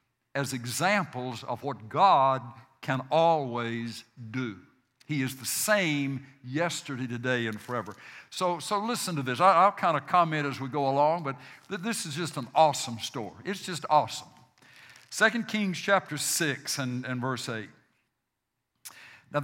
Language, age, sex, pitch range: English, 60-79, male, 125-165 Hz